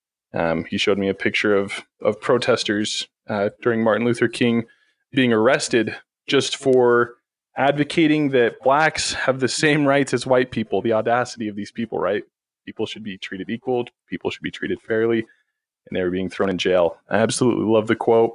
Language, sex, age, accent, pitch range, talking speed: English, male, 20-39, American, 115-135 Hz, 185 wpm